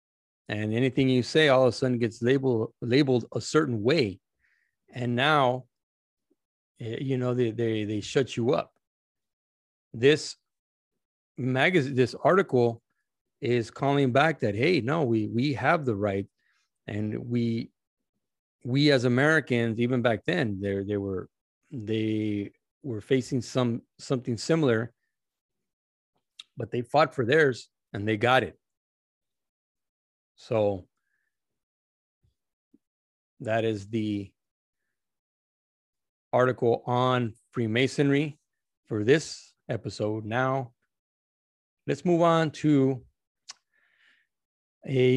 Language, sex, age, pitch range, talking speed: English, male, 40-59, 110-135 Hz, 105 wpm